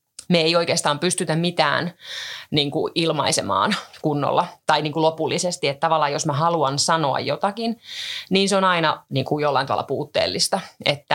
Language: Finnish